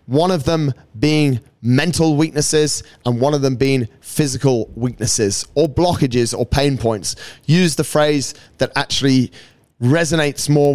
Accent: British